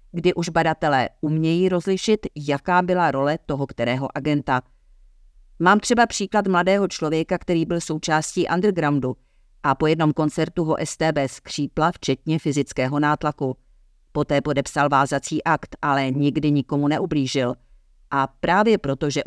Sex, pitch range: female, 135-160 Hz